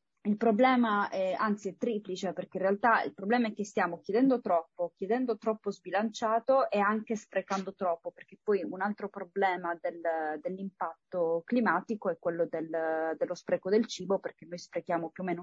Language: Italian